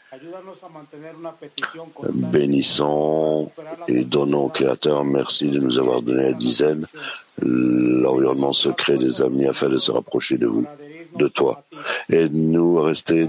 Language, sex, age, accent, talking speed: English, male, 60-79, French, 130 wpm